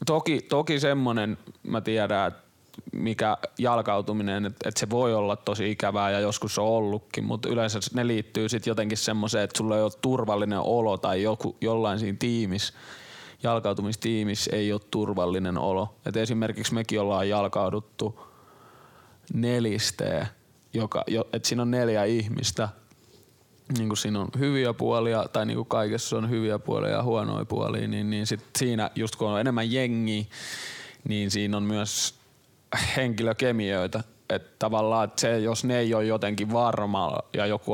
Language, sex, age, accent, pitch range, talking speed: Finnish, male, 20-39, native, 105-115 Hz, 150 wpm